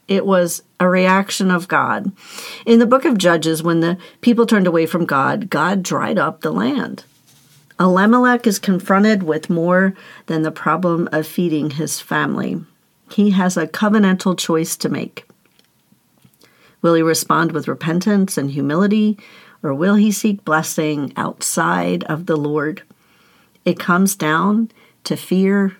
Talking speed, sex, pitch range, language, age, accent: 145 wpm, female, 165-220 Hz, English, 50-69, American